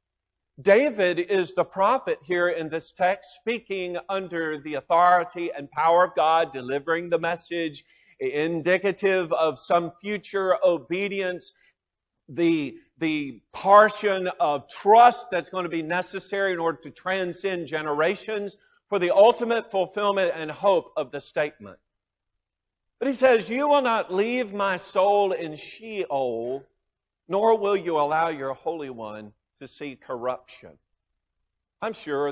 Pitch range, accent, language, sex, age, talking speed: 145-205 Hz, American, English, male, 50-69, 130 wpm